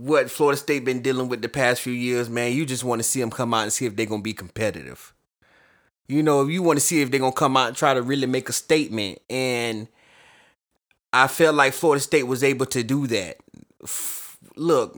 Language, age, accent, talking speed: English, 30-49, American, 235 wpm